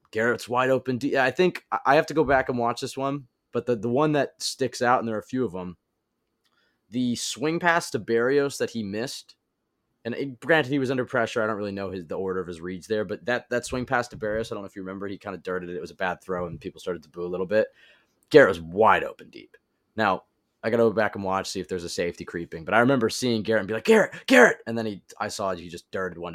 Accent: American